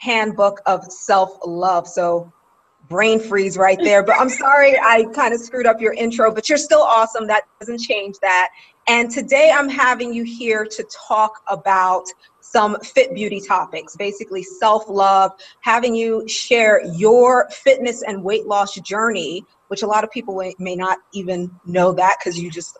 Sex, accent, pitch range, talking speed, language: female, American, 185-225 Hz, 165 wpm, English